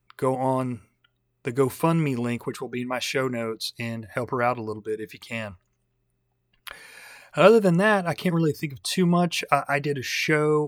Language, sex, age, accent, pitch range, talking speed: English, male, 30-49, American, 125-150 Hz, 200 wpm